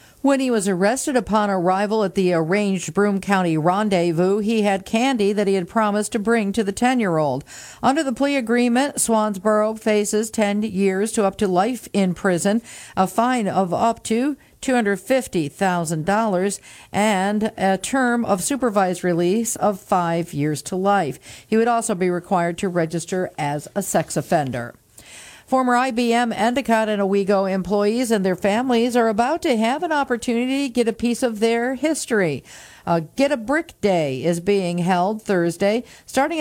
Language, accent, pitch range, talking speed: English, American, 185-235 Hz, 165 wpm